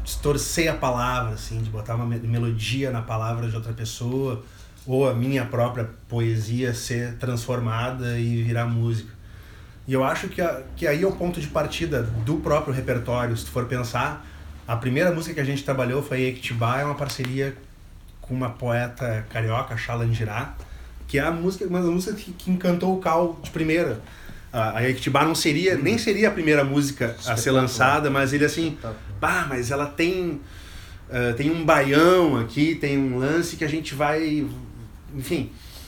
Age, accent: 30-49, Brazilian